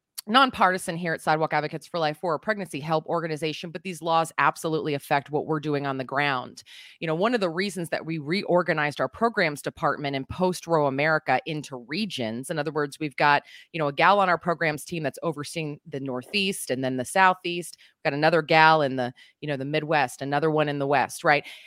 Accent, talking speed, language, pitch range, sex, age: American, 215 wpm, English, 140-175 Hz, female, 30-49